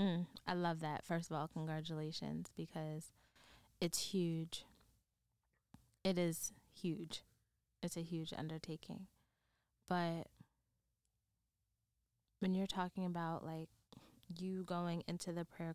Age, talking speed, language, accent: 20-39, 105 wpm, English, American